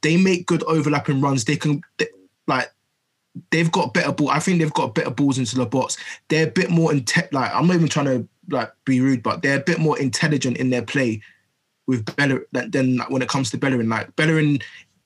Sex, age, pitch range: male, 20-39, 135-160 Hz